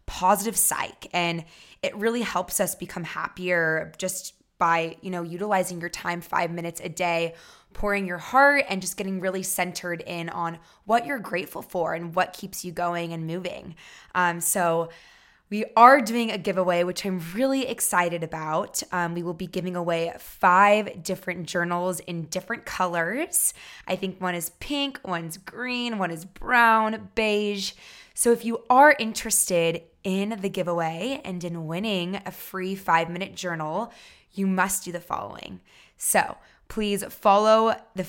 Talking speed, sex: 160 wpm, female